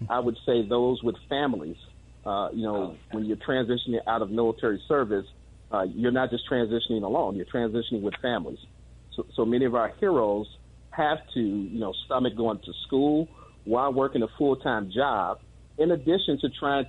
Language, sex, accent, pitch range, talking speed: English, male, American, 110-135 Hz, 175 wpm